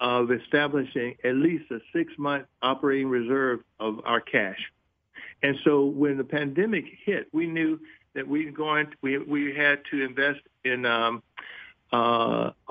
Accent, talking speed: American, 150 wpm